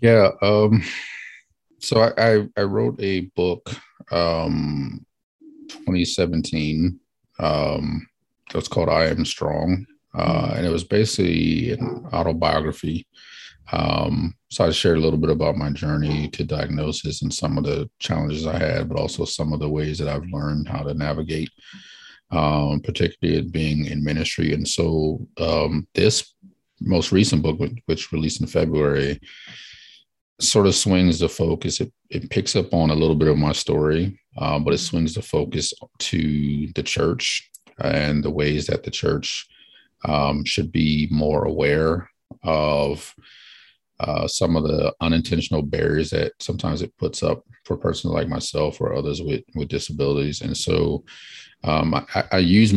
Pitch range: 75-90 Hz